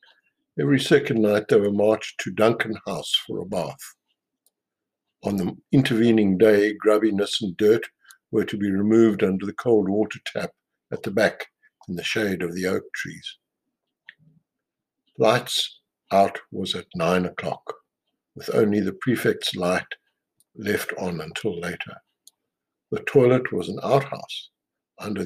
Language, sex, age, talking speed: English, male, 60-79, 140 wpm